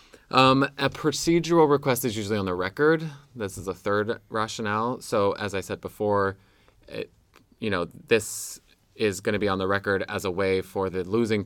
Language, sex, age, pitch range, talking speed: English, male, 20-39, 95-115 Hz, 185 wpm